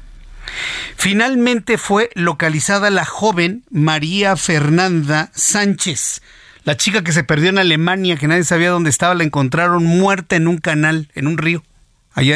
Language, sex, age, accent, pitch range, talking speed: Spanish, male, 50-69, Mexican, 140-195 Hz, 145 wpm